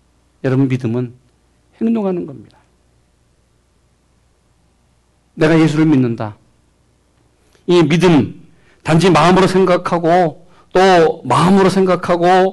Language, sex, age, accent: Korean, male, 40-59, native